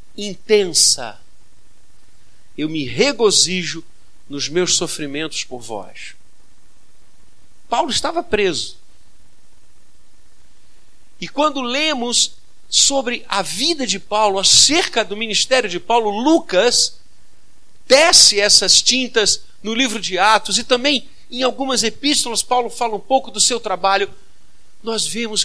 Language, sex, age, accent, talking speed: Portuguese, male, 50-69, Brazilian, 110 wpm